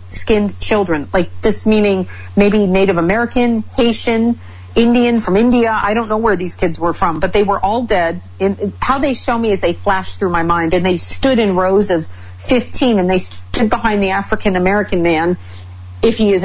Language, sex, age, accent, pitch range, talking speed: English, female, 40-59, American, 175-220 Hz, 195 wpm